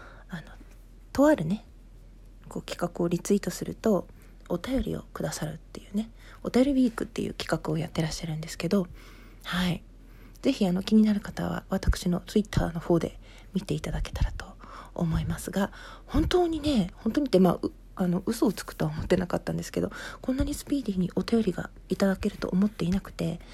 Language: Japanese